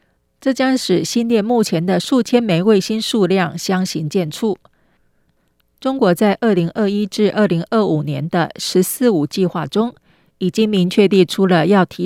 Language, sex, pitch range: Chinese, female, 170-220 Hz